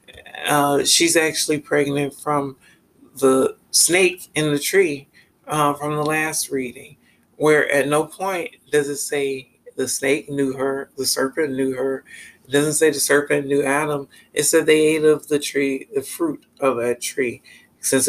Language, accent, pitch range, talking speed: English, American, 130-150 Hz, 165 wpm